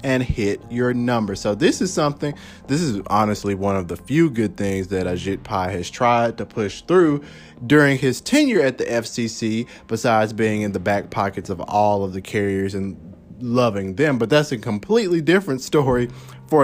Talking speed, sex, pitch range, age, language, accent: 190 wpm, male, 100-135 Hz, 30-49, English, American